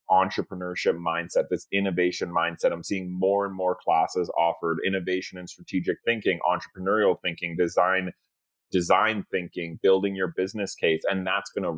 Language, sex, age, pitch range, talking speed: English, male, 30-49, 90-105 Hz, 150 wpm